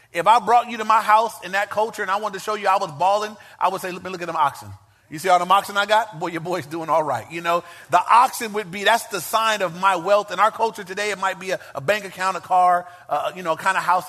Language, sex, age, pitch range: English, male, 30-49, 155-200 Hz